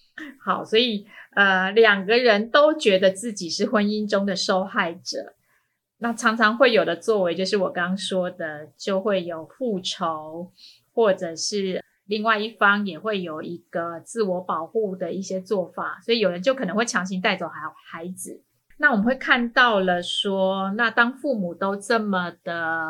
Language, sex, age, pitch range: Chinese, female, 30-49, 175-215 Hz